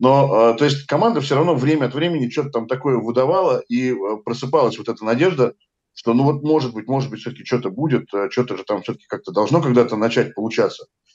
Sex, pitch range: male, 115-145 Hz